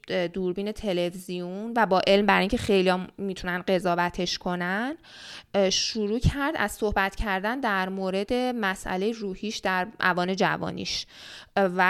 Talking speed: 130 wpm